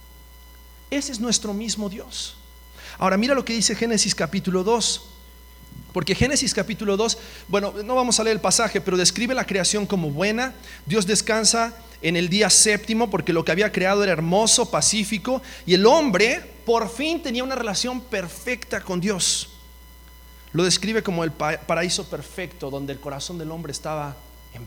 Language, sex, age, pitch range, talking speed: Spanish, male, 40-59, 140-215 Hz, 165 wpm